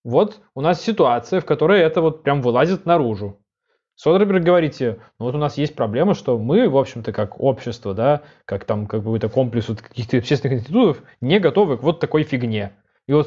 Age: 20-39